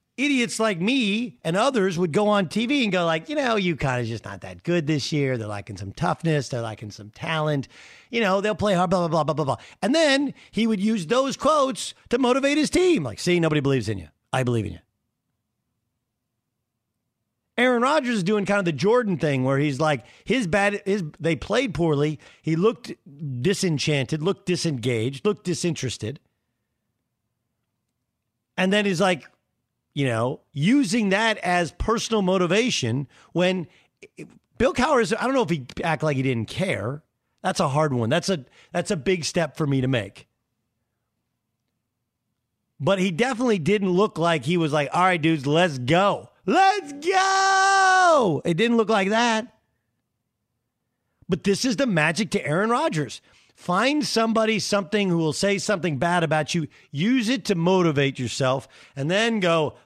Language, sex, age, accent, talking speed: English, male, 50-69, American, 175 wpm